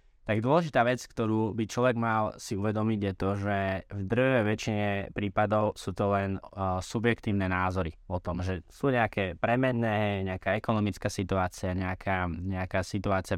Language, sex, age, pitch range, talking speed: Slovak, male, 20-39, 95-110 Hz, 150 wpm